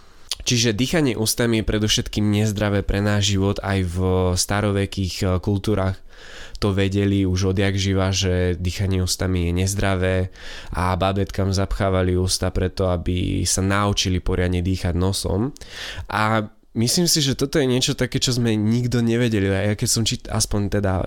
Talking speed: 150 wpm